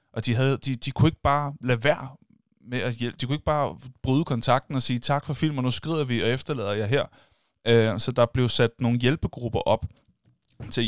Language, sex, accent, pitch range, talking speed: Danish, male, native, 110-140 Hz, 230 wpm